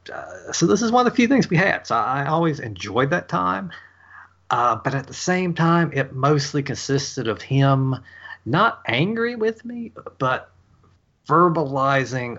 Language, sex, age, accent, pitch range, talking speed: English, male, 30-49, American, 100-135 Hz, 170 wpm